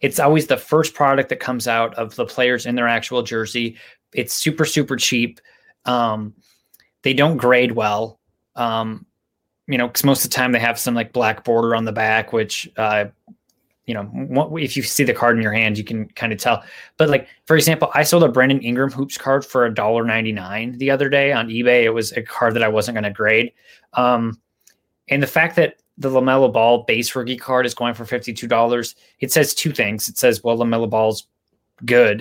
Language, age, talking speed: English, 20-39, 210 wpm